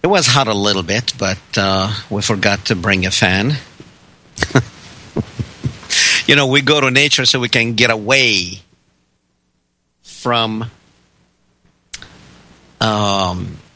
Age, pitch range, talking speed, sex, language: 50-69, 100-125 Hz, 120 wpm, male, English